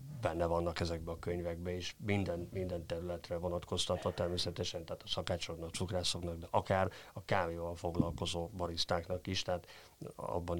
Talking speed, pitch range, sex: 140 wpm, 90-130 Hz, male